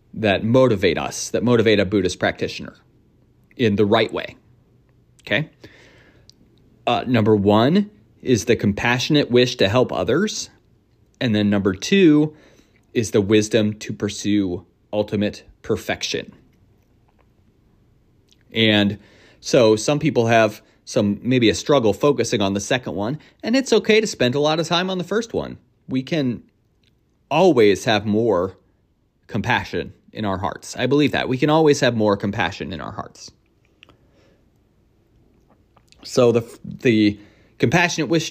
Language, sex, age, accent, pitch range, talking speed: English, male, 30-49, American, 105-140 Hz, 135 wpm